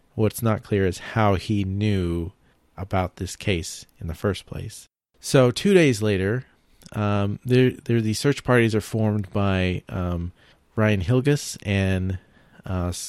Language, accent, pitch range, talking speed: English, American, 95-120 Hz, 145 wpm